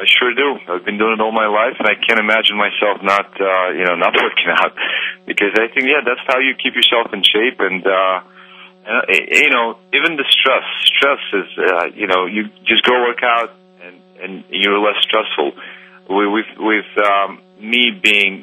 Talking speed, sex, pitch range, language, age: 200 wpm, male, 95-135 Hz, English, 40-59